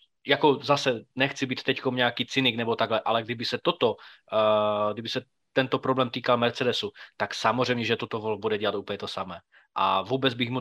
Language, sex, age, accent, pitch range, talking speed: Czech, male, 20-39, native, 115-130 Hz, 190 wpm